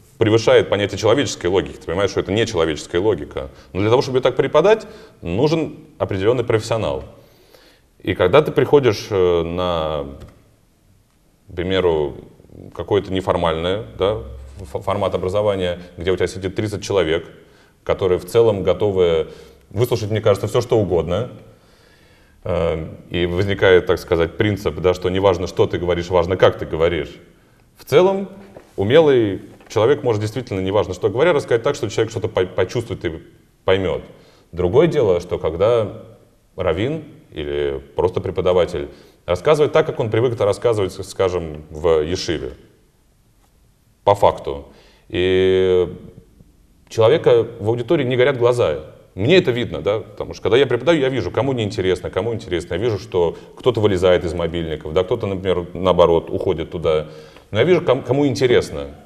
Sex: male